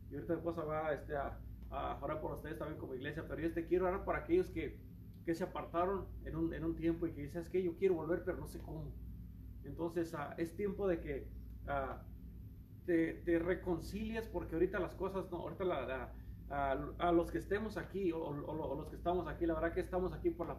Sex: male